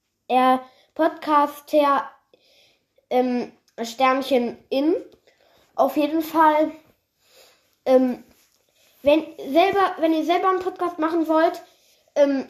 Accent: German